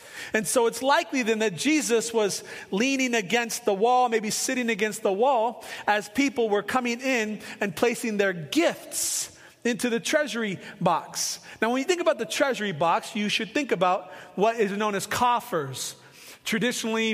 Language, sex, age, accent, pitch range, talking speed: English, male, 30-49, American, 195-235 Hz, 170 wpm